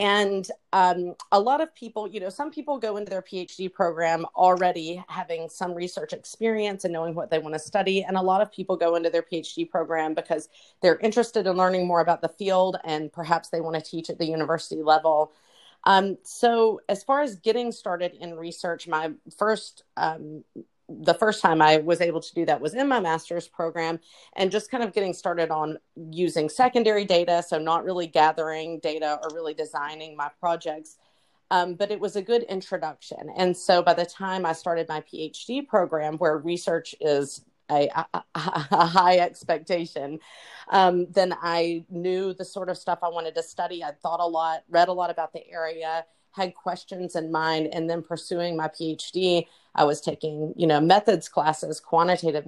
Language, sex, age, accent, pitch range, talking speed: English, female, 30-49, American, 160-190 Hz, 190 wpm